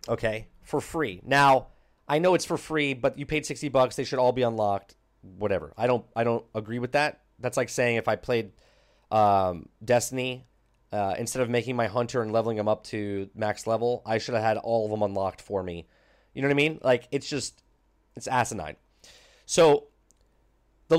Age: 30-49